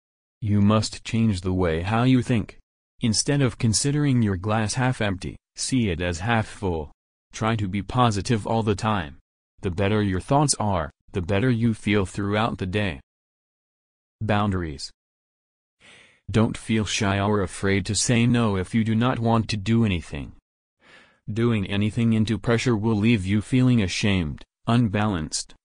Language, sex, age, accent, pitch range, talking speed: English, male, 30-49, American, 95-115 Hz, 155 wpm